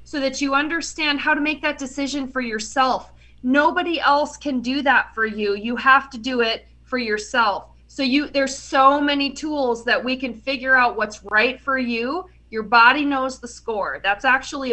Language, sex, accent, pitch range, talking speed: English, female, American, 220-270 Hz, 190 wpm